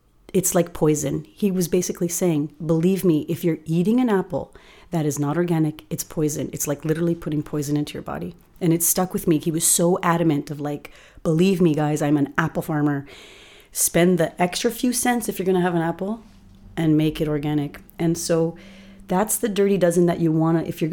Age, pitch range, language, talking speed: 30-49, 160-195 Hz, English, 210 wpm